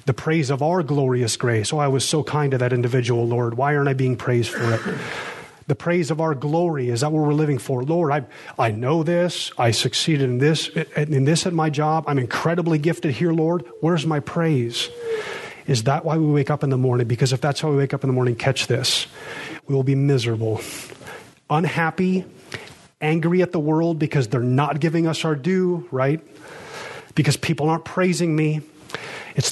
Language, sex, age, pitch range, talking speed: English, male, 30-49, 130-160 Hz, 200 wpm